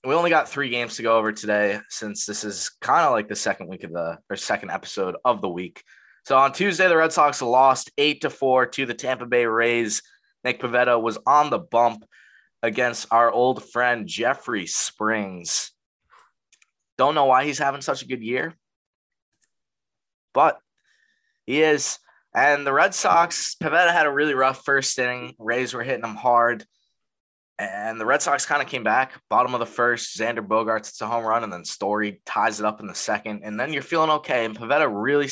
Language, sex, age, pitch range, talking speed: English, male, 20-39, 110-135 Hz, 195 wpm